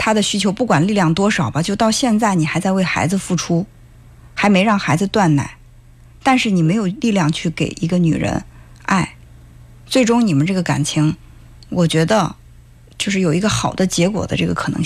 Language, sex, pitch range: Chinese, female, 160-215 Hz